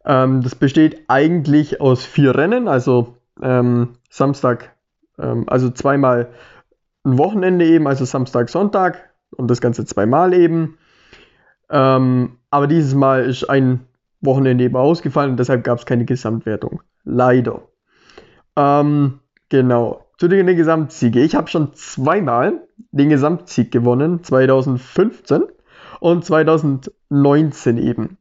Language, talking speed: German, 120 wpm